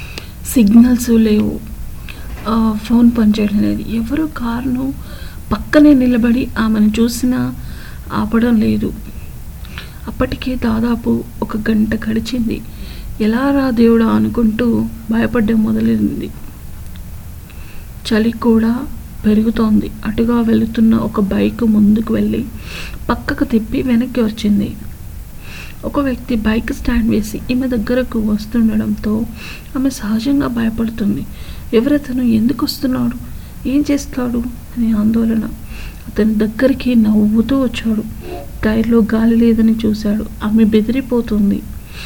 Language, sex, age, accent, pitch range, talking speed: Telugu, female, 50-69, native, 215-240 Hz, 95 wpm